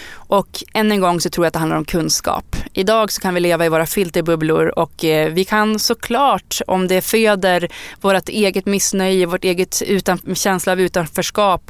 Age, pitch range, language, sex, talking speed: 20-39, 165-195 Hz, English, female, 185 wpm